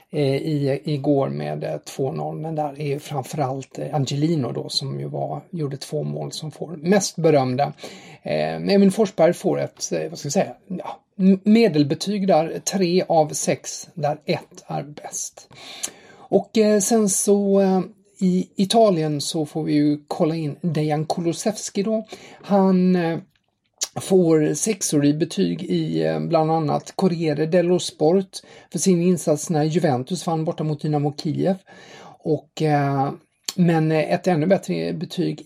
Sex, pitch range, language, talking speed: male, 145-185 Hz, English, 140 wpm